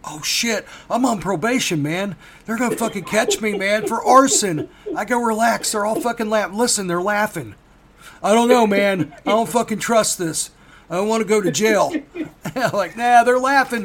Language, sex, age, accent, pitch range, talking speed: English, male, 50-69, American, 165-220 Hz, 200 wpm